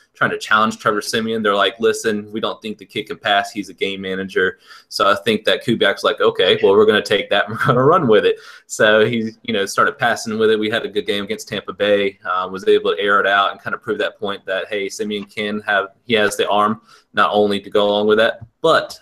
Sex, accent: male, American